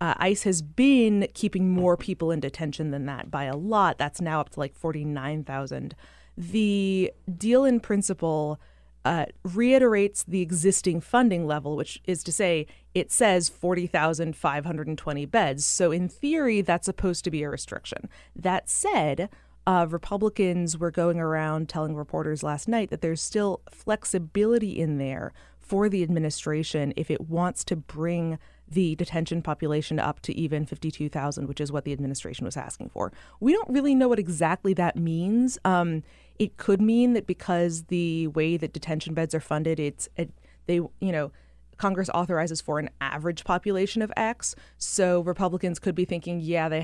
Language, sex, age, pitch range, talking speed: English, female, 30-49, 155-190 Hz, 165 wpm